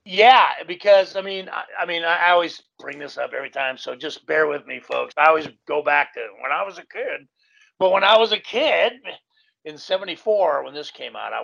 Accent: American